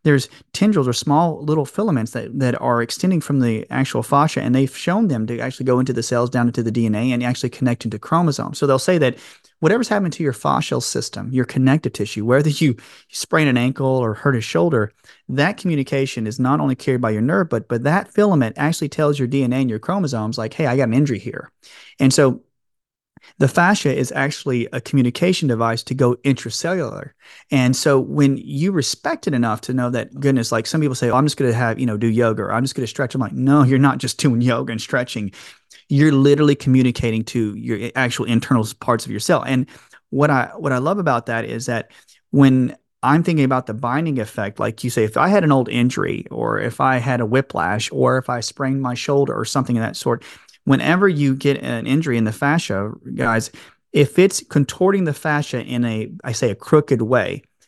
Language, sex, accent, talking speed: English, male, American, 220 wpm